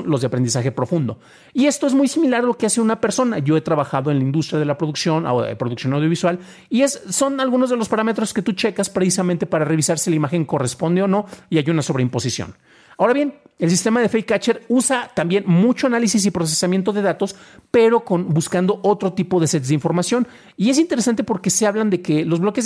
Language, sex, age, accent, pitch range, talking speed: Spanish, male, 40-59, Mexican, 155-215 Hz, 215 wpm